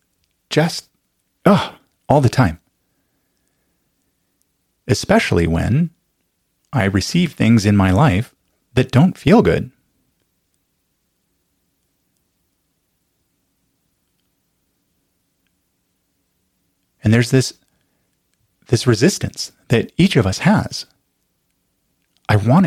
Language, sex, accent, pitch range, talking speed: English, male, American, 95-125 Hz, 75 wpm